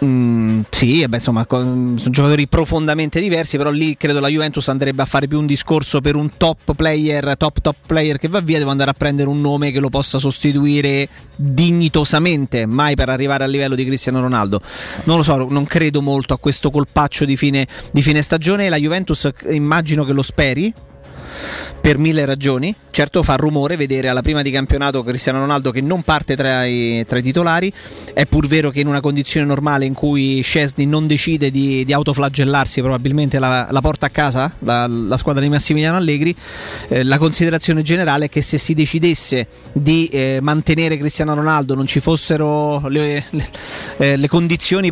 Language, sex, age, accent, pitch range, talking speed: Italian, male, 30-49, native, 135-155 Hz, 185 wpm